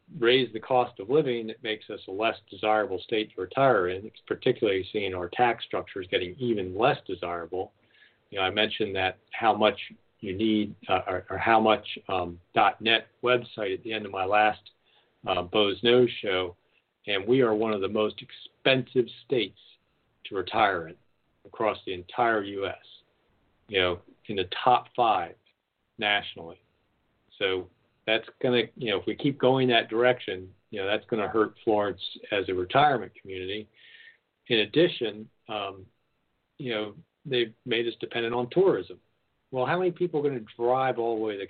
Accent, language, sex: American, English, male